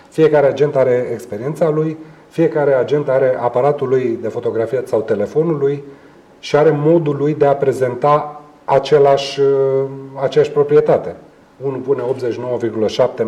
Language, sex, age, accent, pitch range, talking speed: Romanian, male, 30-49, native, 140-180 Hz, 125 wpm